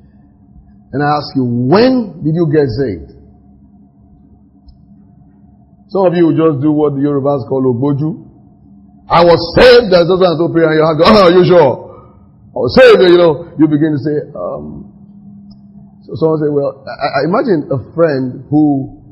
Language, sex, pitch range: English, male, 130-175 Hz